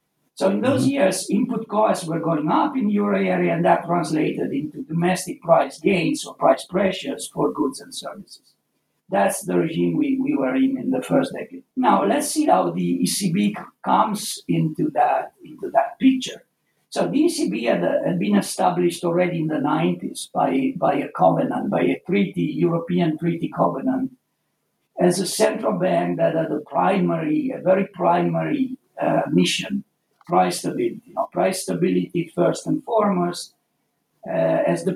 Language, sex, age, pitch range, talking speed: English, male, 60-79, 165-260 Hz, 160 wpm